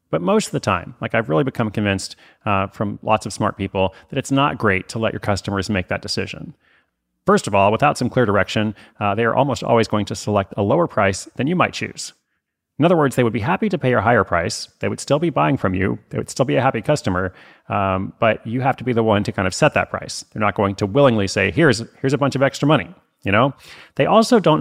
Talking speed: 260 wpm